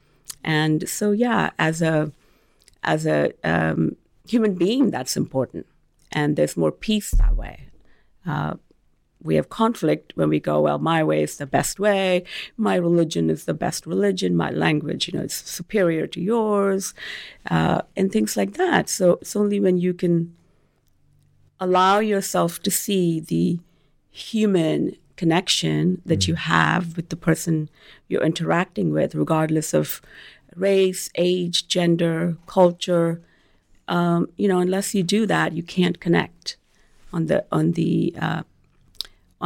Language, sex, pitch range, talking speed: English, female, 155-195 Hz, 145 wpm